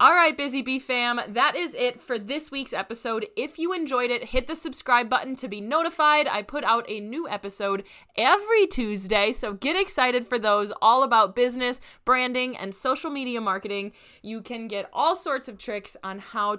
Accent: American